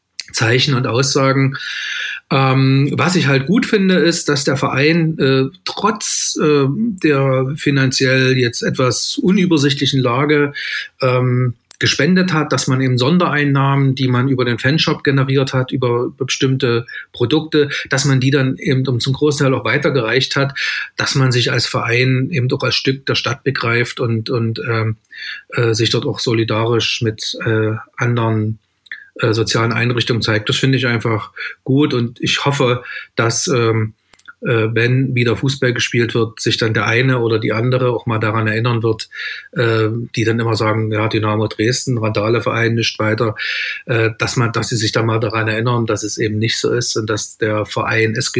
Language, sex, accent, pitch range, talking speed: German, male, German, 110-135 Hz, 170 wpm